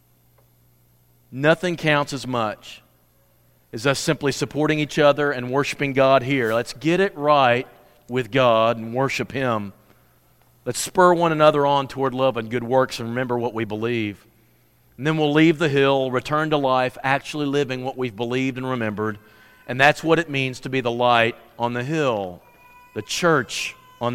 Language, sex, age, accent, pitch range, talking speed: English, male, 40-59, American, 120-150 Hz, 170 wpm